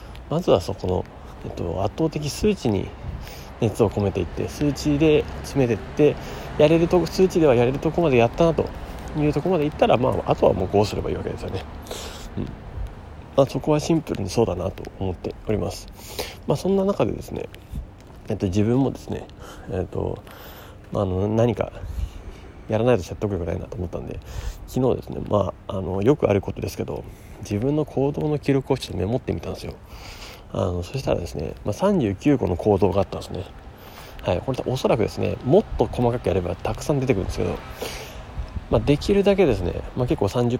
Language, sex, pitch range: Japanese, male, 95-125 Hz